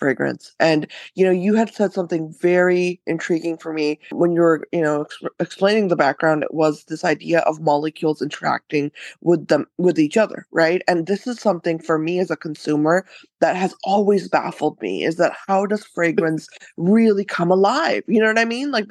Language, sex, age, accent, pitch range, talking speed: English, female, 20-39, American, 165-220 Hz, 195 wpm